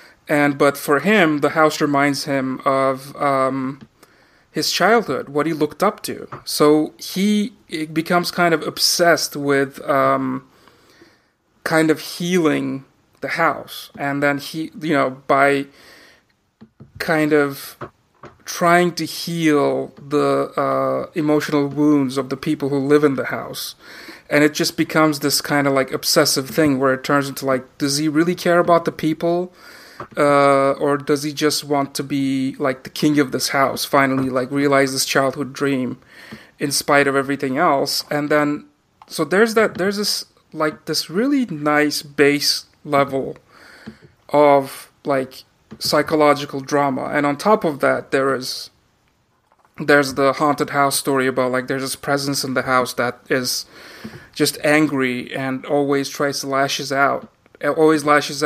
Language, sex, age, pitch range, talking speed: English, male, 30-49, 135-155 Hz, 155 wpm